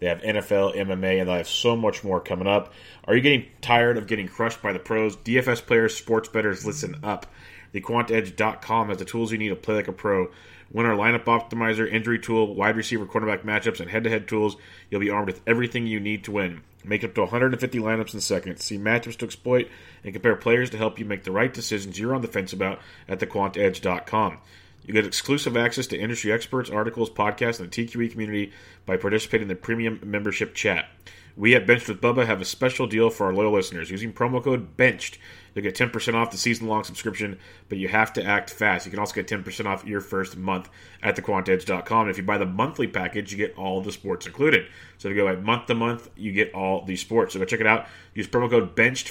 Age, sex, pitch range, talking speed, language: 30-49, male, 100-115 Hz, 220 wpm, English